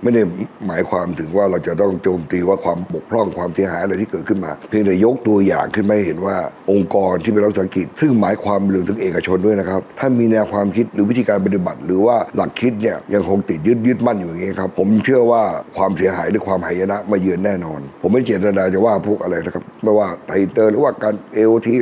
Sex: male